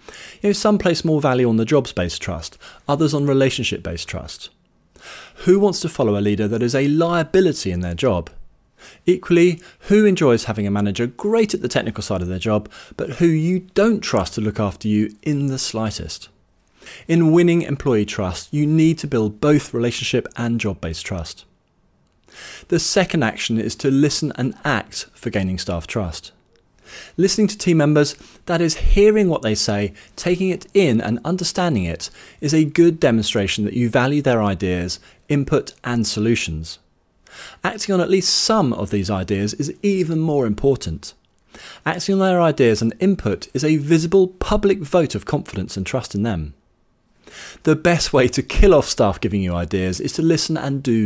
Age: 30-49